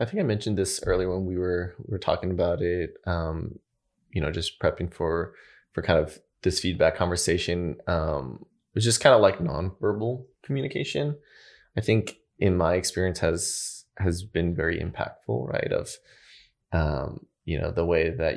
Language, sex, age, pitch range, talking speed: English, male, 20-39, 90-105 Hz, 170 wpm